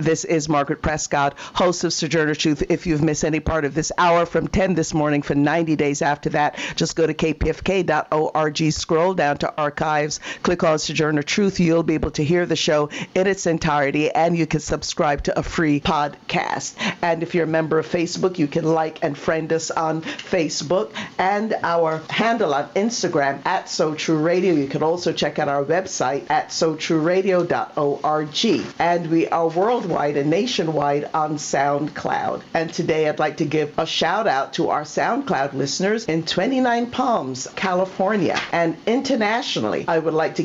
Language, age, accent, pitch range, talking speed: English, 50-69, American, 155-175 Hz, 175 wpm